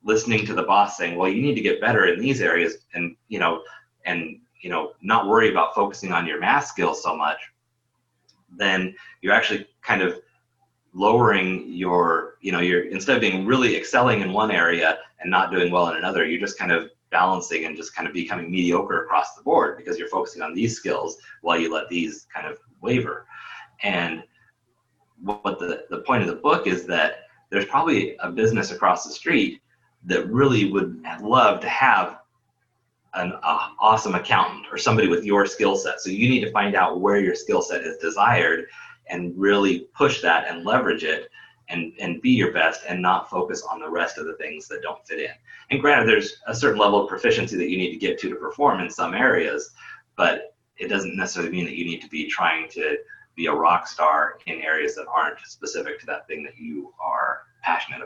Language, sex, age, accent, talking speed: English, male, 30-49, American, 205 wpm